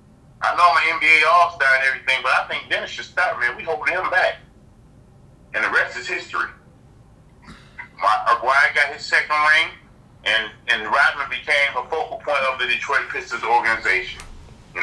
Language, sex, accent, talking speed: English, male, American, 160 wpm